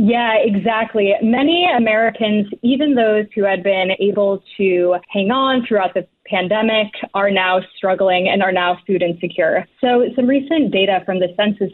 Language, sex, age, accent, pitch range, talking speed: English, female, 20-39, American, 185-220 Hz, 160 wpm